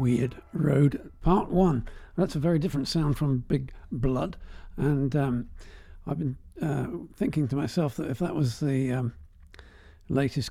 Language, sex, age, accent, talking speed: English, male, 50-69, British, 155 wpm